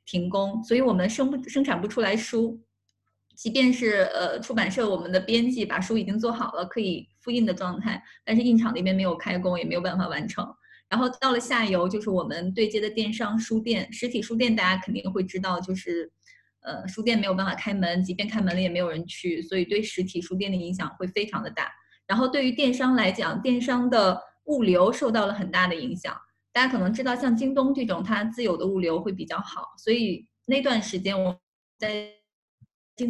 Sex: female